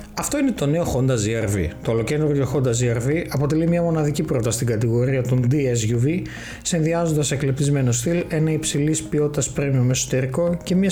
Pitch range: 135-165 Hz